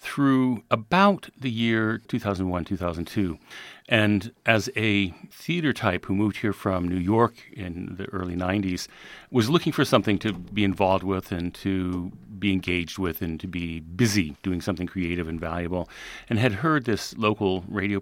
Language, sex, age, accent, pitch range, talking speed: English, male, 40-59, American, 90-115 Hz, 160 wpm